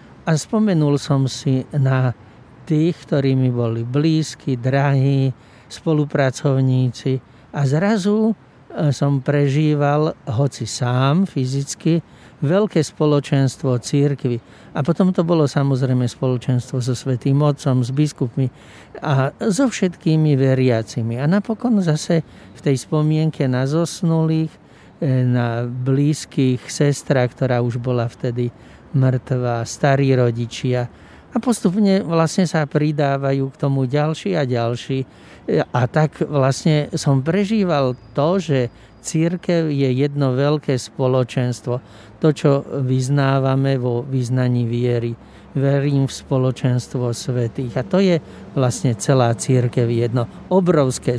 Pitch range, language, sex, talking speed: 125-150 Hz, Slovak, male, 110 wpm